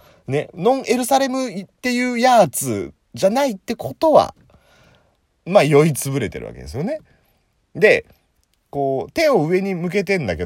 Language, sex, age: Japanese, male, 30-49